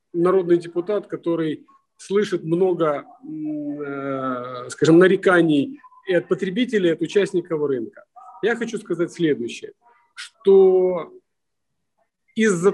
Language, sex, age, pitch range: Ukrainian, male, 40-59, 165-210 Hz